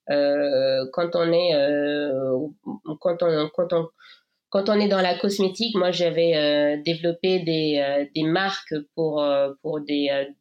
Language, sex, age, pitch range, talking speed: French, female, 20-39, 150-185 Hz, 160 wpm